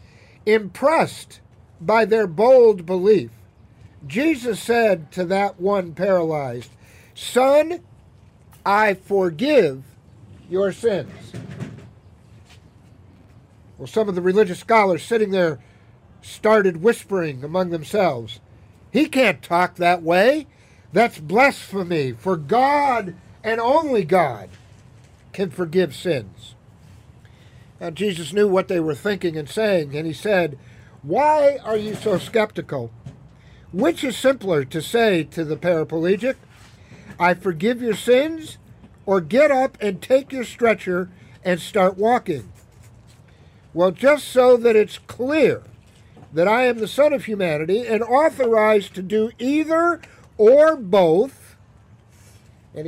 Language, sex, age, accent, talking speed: English, male, 50-69, American, 115 wpm